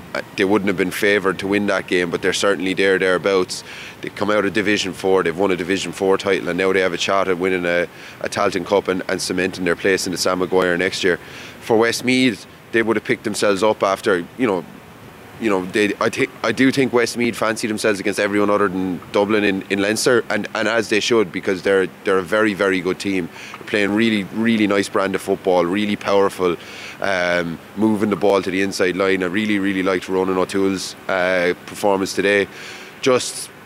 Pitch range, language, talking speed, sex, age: 95-110 Hz, English, 215 wpm, male, 20-39